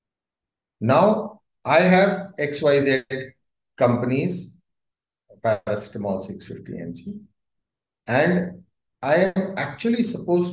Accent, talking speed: native, 80 wpm